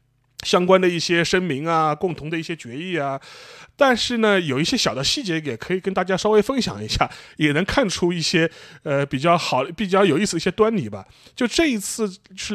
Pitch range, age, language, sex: 145-215 Hz, 30-49, Chinese, male